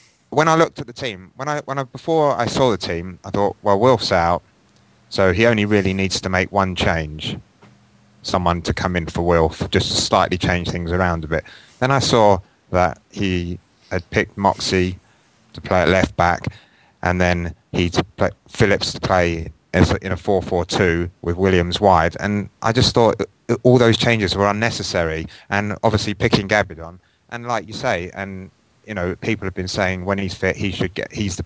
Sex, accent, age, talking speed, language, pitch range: male, British, 30-49, 200 wpm, English, 90-110 Hz